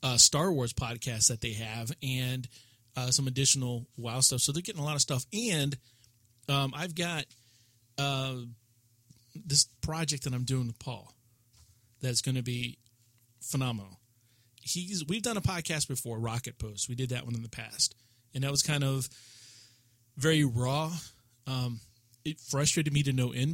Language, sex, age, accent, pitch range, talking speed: English, male, 30-49, American, 115-135 Hz, 170 wpm